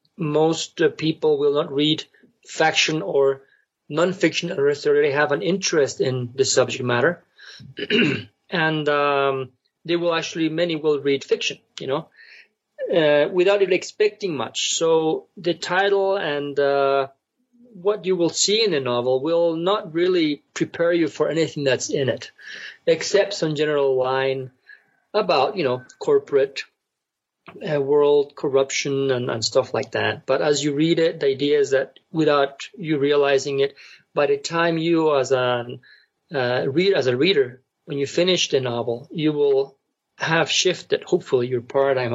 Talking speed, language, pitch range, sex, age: 155 wpm, English, 135-200 Hz, male, 40-59